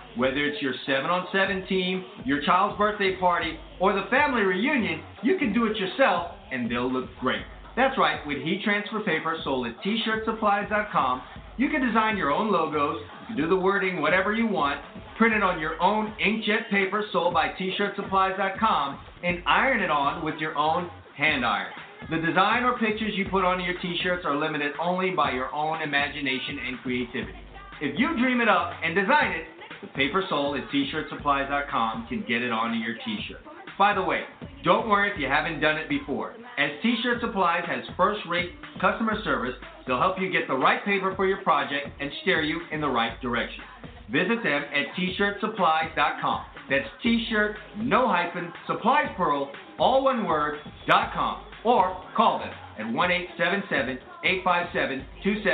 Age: 40-59